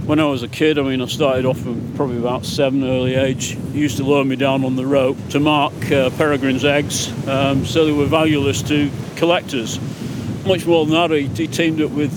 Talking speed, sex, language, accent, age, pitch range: 220 wpm, male, English, British, 40-59, 130-150 Hz